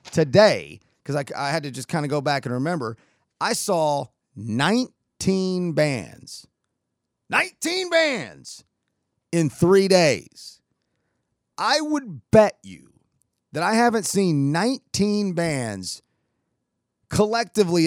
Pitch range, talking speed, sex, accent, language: 120-170 Hz, 110 wpm, male, American, English